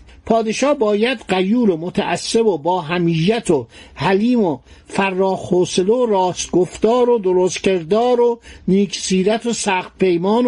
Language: Persian